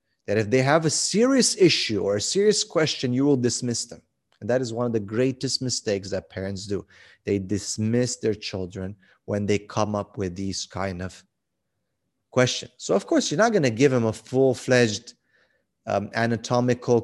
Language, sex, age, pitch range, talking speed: English, male, 30-49, 105-130 Hz, 180 wpm